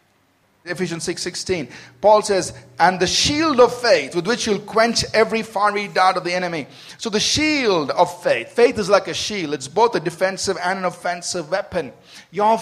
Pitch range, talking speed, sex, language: 135-175 Hz, 180 wpm, male, English